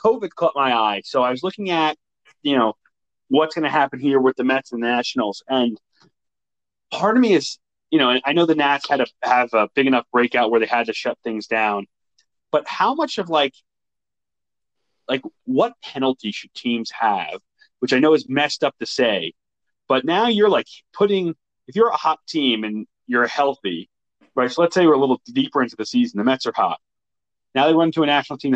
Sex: male